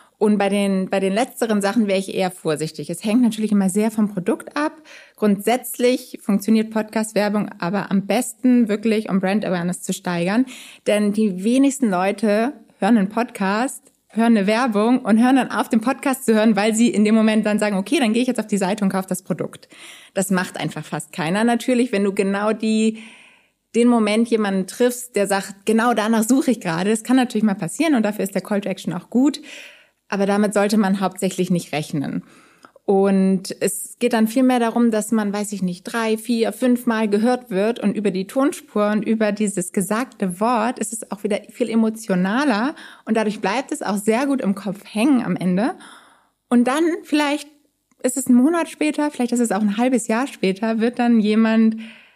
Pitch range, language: 200-245 Hz, German